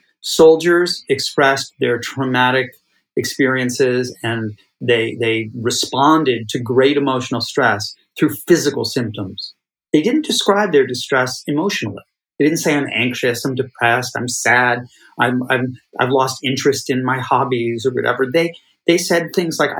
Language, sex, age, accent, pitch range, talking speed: English, male, 30-49, American, 125-170 Hz, 140 wpm